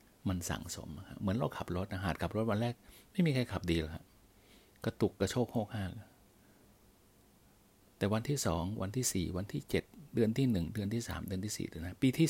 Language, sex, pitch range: Thai, male, 85-110 Hz